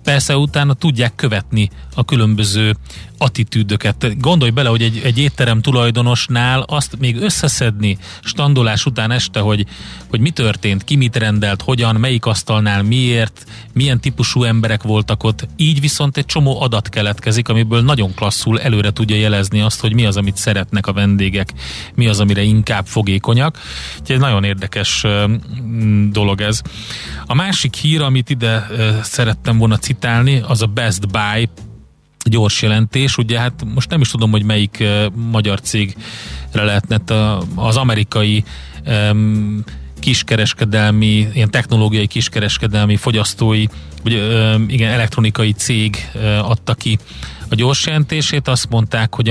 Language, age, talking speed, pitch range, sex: Hungarian, 30-49, 135 wpm, 105-125 Hz, male